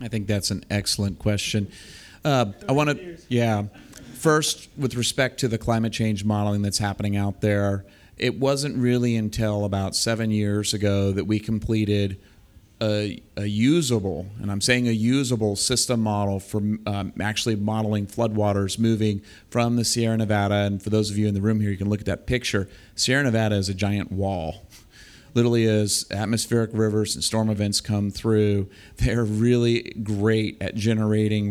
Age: 40-59